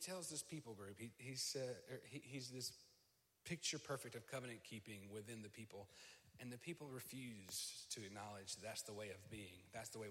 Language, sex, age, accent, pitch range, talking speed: English, male, 30-49, American, 105-130 Hz, 185 wpm